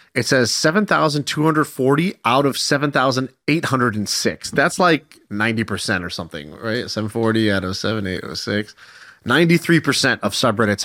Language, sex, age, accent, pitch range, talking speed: English, male, 30-49, American, 110-155 Hz, 100 wpm